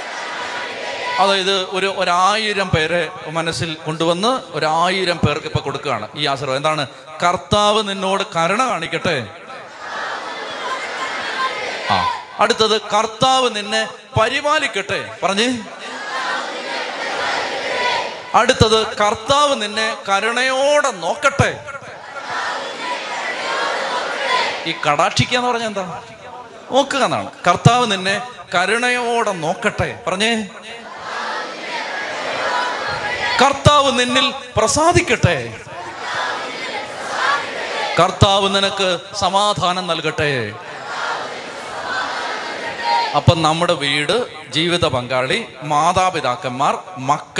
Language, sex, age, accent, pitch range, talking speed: Malayalam, male, 30-49, native, 175-220 Hz, 65 wpm